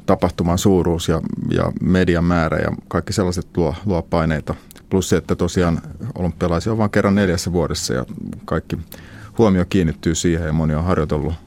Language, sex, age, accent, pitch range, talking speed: Finnish, male, 30-49, native, 85-95 Hz, 160 wpm